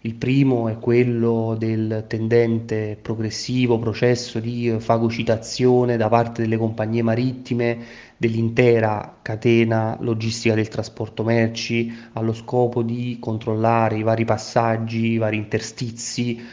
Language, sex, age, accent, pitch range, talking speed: Italian, male, 30-49, native, 110-120 Hz, 115 wpm